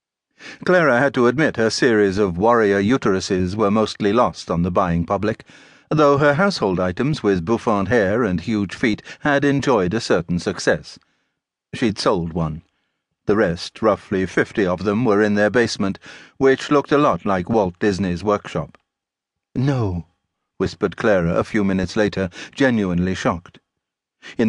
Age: 60-79